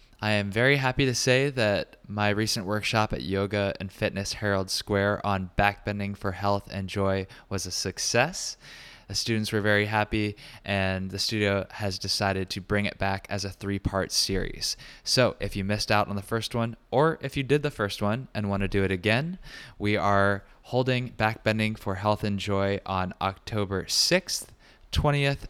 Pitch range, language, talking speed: 95-110 Hz, English, 180 wpm